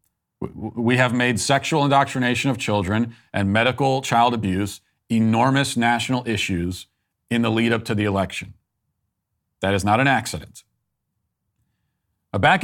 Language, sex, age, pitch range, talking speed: English, male, 40-59, 100-125 Hz, 125 wpm